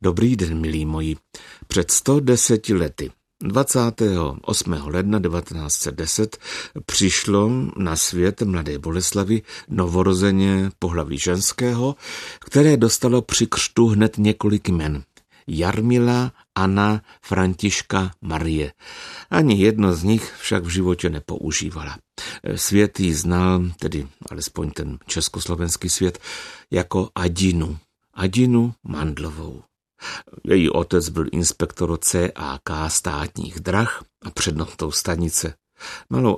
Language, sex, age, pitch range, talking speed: Czech, male, 60-79, 80-100 Hz, 100 wpm